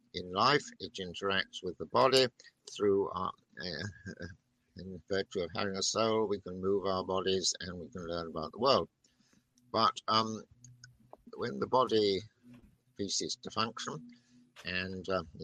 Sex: male